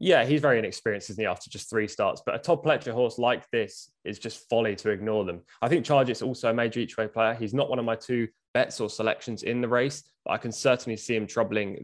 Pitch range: 110-130 Hz